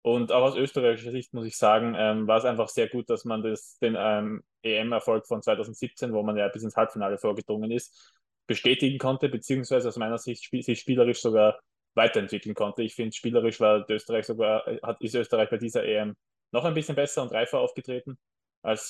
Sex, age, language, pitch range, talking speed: male, 20-39, German, 105-120 Hz, 195 wpm